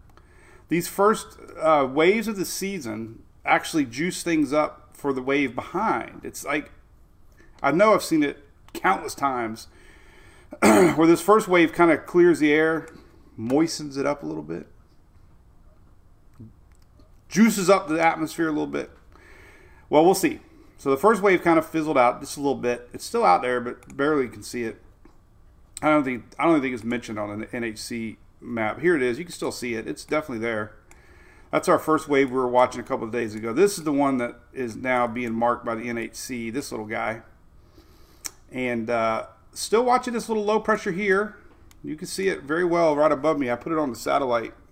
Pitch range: 115-165 Hz